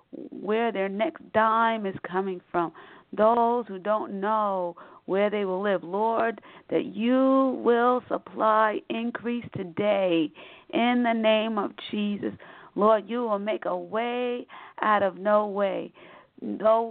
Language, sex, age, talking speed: English, female, 50-69, 135 wpm